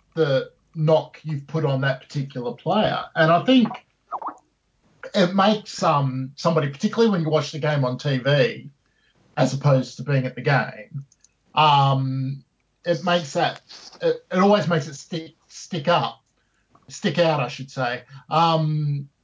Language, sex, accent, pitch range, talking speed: English, male, Australian, 135-165 Hz, 150 wpm